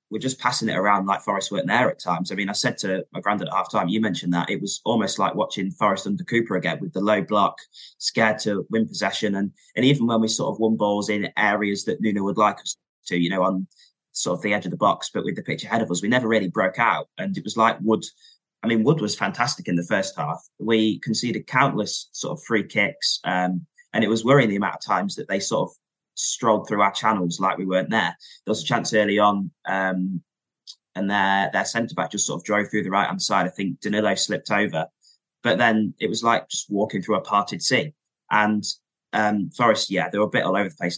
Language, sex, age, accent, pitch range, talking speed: English, male, 20-39, British, 95-110 Hz, 245 wpm